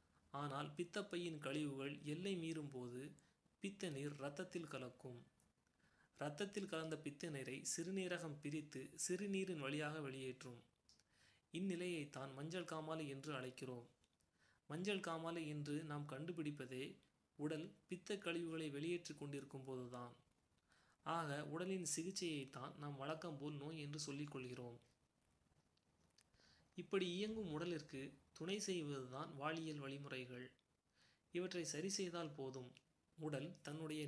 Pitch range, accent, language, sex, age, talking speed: 130-165 Hz, native, Tamil, male, 30-49, 95 wpm